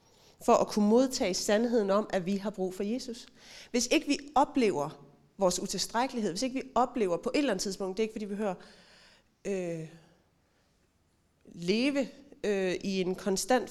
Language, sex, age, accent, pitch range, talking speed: Danish, female, 30-49, native, 190-250 Hz, 160 wpm